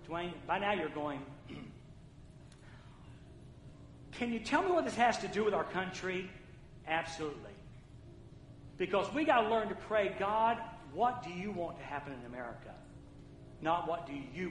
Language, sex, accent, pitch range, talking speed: English, male, American, 135-185 Hz, 155 wpm